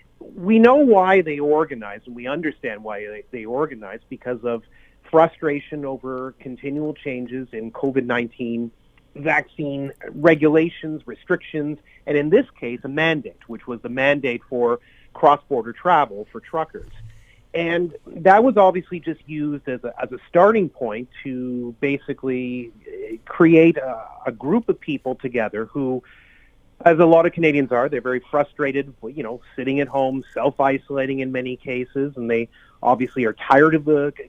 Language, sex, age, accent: English, male, 30-49, American